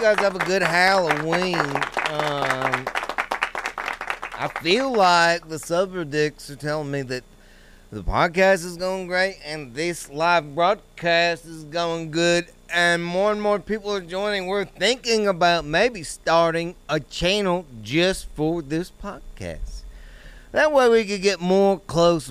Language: English